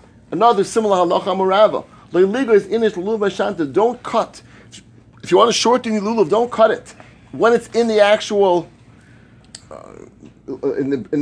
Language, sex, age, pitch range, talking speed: English, male, 30-49, 170-225 Hz, 150 wpm